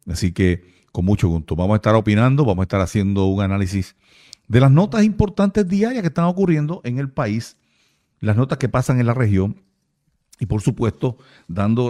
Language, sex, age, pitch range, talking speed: Spanish, male, 50-69, 100-140 Hz, 185 wpm